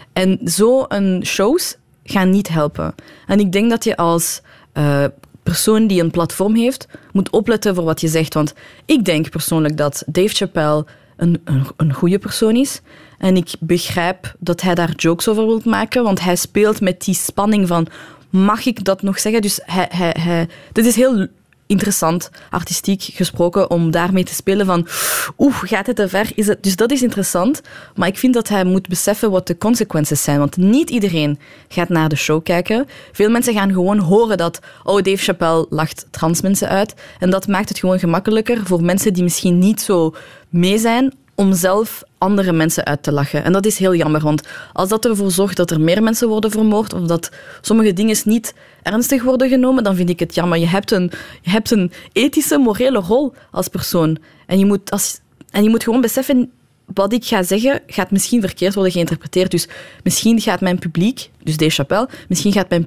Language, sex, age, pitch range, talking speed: Dutch, female, 20-39, 170-215 Hz, 195 wpm